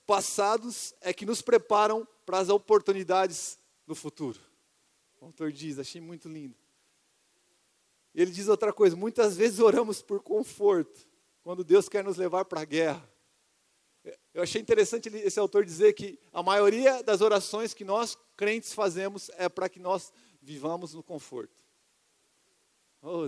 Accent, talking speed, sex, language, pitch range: Brazilian, 145 wpm, male, Portuguese, 175-215 Hz